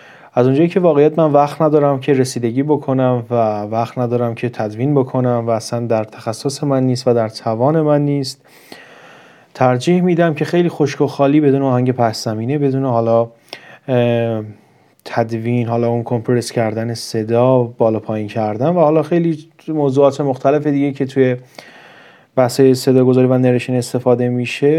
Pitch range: 120-150 Hz